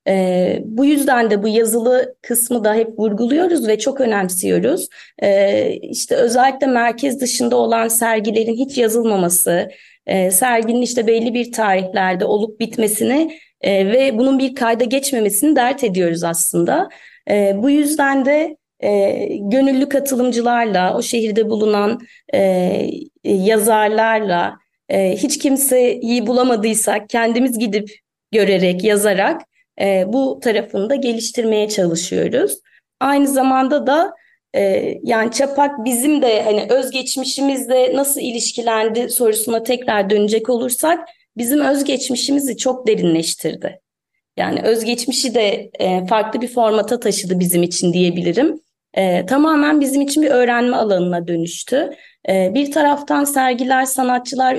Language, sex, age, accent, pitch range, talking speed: Turkish, female, 30-49, native, 210-265 Hz, 110 wpm